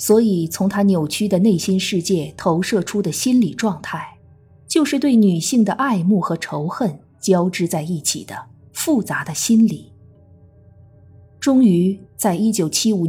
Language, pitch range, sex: Chinese, 160-230 Hz, female